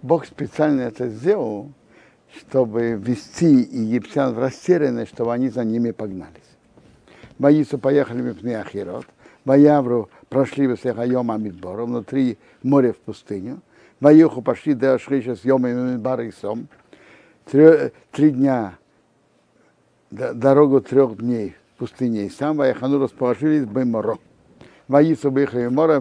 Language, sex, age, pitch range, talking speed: Russian, male, 60-79, 120-150 Hz, 120 wpm